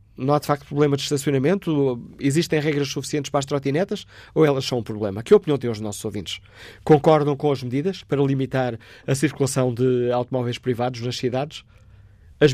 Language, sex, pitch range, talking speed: Portuguese, male, 115-145 Hz, 180 wpm